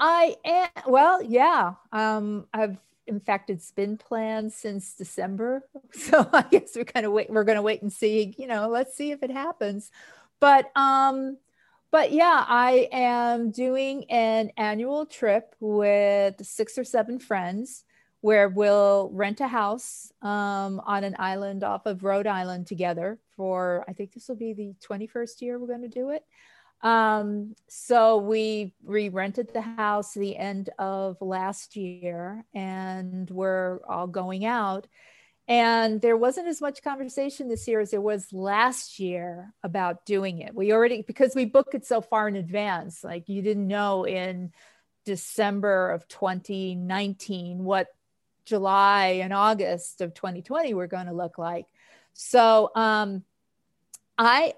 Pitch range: 195-245 Hz